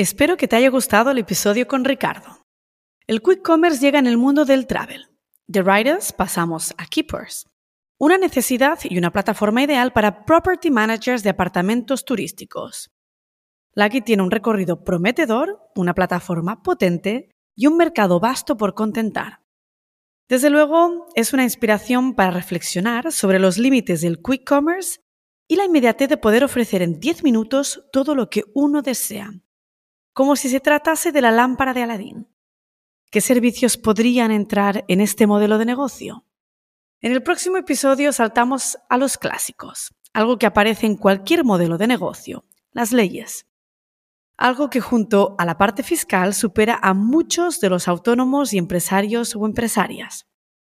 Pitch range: 200-275 Hz